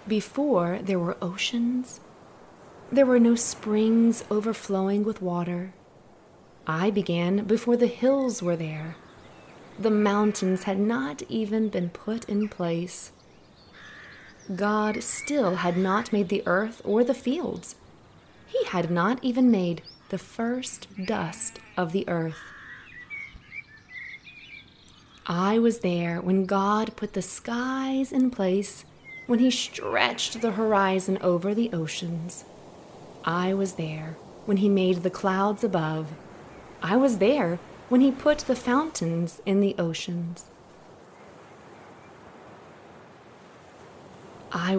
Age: 30-49